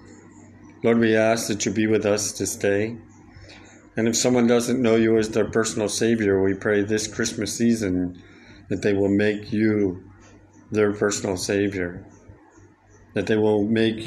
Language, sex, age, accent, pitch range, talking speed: English, male, 50-69, American, 100-110 Hz, 160 wpm